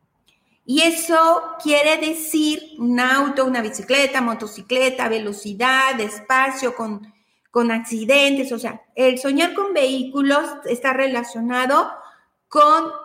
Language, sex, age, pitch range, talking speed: Spanish, female, 40-59, 245-320 Hz, 105 wpm